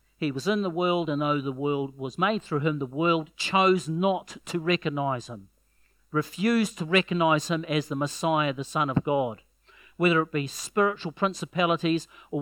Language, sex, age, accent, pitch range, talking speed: English, male, 50-69, Australian, 135-180 Hz, 180 wpm